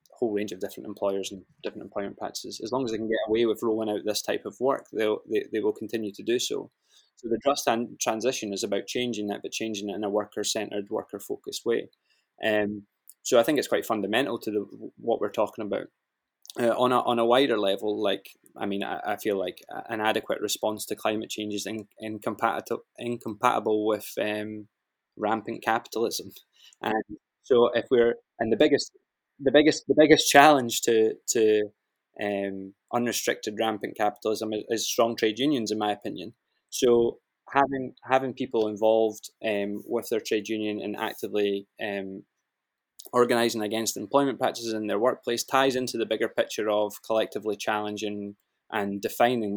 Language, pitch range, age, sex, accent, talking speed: English, 105-120 Hz, 20-39, male, British, 175 wpm